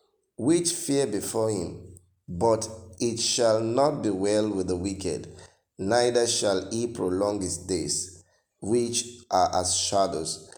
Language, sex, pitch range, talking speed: English, male, 100-135 Hz, 130 wpm